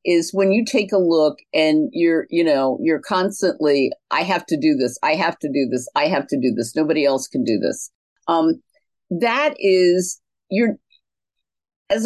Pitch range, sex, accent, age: 170-255 Hz, female, American, 50-69